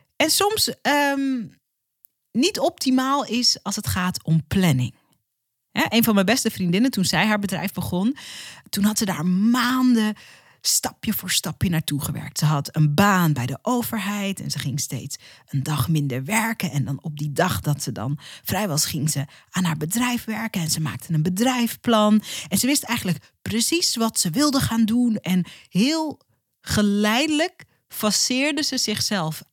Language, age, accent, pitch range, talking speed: Dutch, 40-59, Dutch, 160-235 Hz, 165 wpm